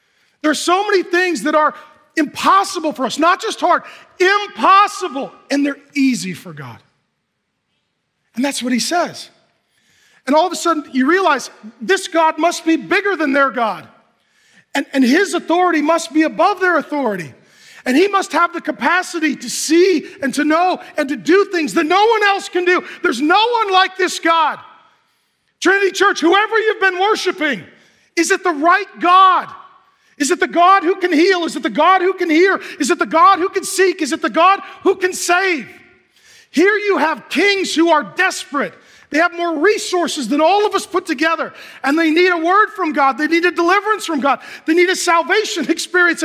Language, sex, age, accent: English, male, 40-59, American